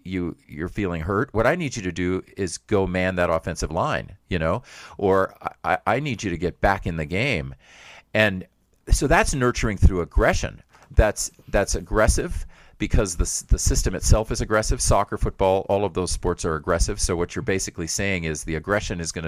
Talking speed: 195 wpm